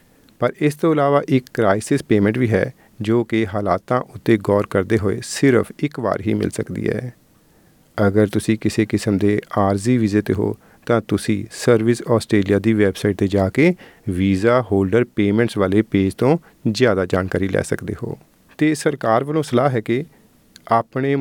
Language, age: Punjabi, 40-59